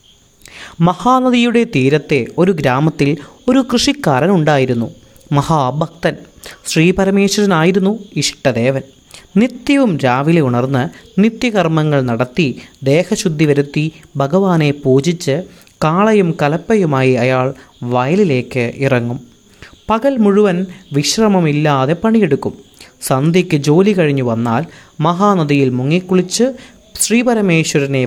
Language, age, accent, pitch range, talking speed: Malayalam, 30-49, native, 135-195 Hz, 75 wpm